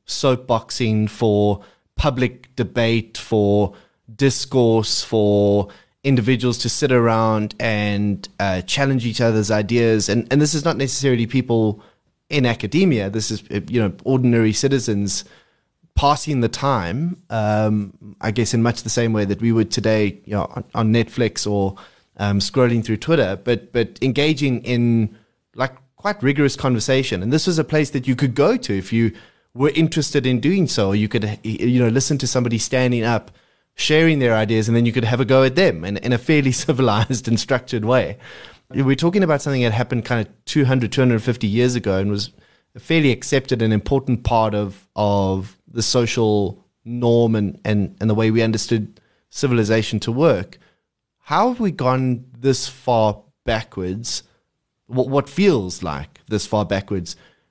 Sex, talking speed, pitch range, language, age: male, 165 wpm, 105-130 Hz, English, 20-39